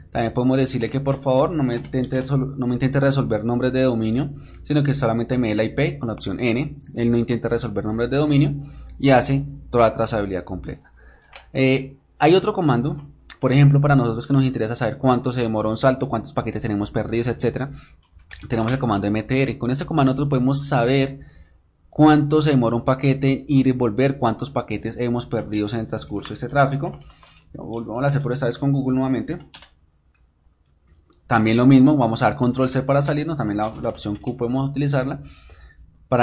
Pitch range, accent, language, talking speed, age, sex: 110-135 Hz, Colombian, Ukrainian, 195 wpm, 20-39, male